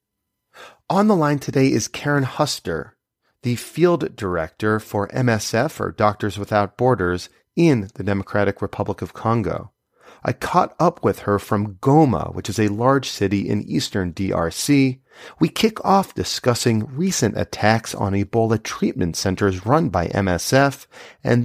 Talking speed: 145 wpm